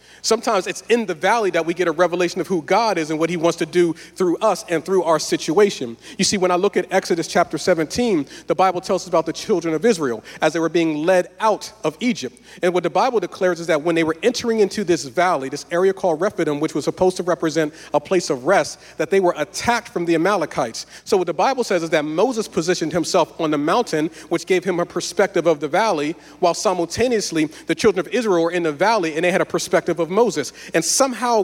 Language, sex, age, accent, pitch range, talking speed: English, male, 40-59, American, 170-205 Hz, 240 wpm